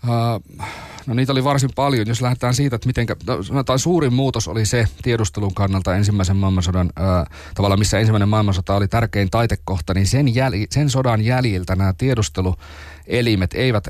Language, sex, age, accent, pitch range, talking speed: Finnish, male, 30-49, native, 95-115 Hz, 165 wpm